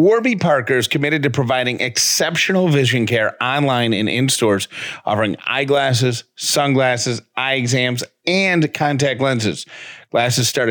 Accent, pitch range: American, 110-140 Hz